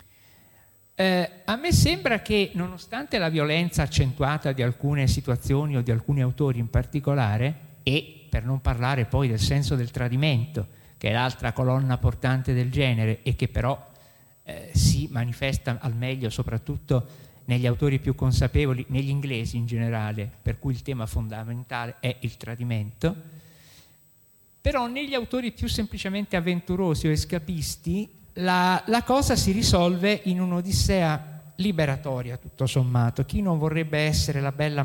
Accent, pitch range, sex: native, 125-155 Hz, male